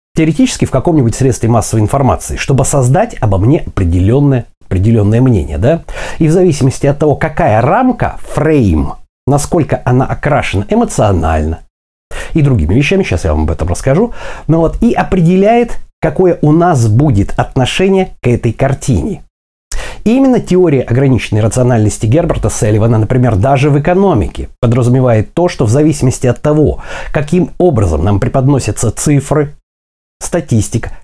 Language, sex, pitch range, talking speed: Russian, male, 105-155 Hz, 140 wpm